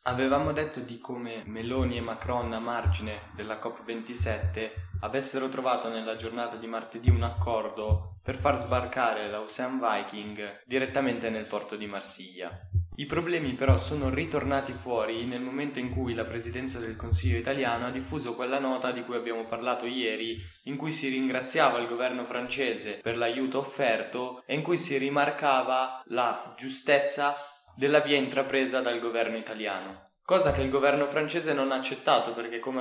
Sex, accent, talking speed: male, native, 160 wpm